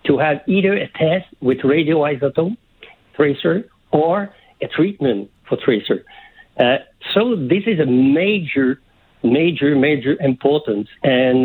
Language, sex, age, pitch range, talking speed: English, male, 60-79, 125-160 Hz, 120 wpm